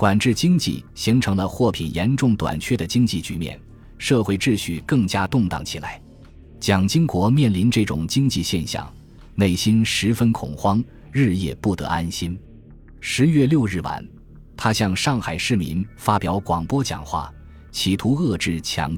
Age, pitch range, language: 20-39, 85-115 Hz, Chinese